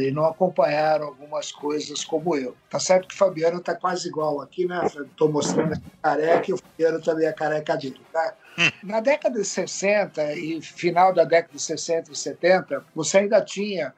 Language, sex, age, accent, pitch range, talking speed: Portuguese, male, 60-79, Brazilian, 150-195 Hz, 200 wpm